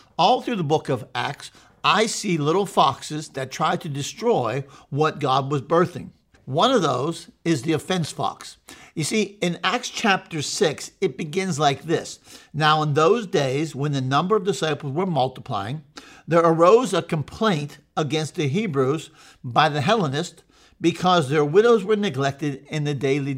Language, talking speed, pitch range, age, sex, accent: English, 165 wpm, 145-185 Hz, 50-69, male, American